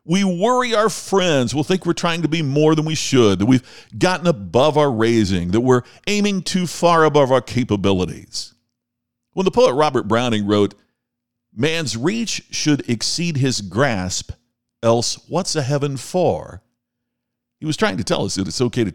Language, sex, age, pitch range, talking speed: English, male, 50-69, 105-155 Hz, 175 wpm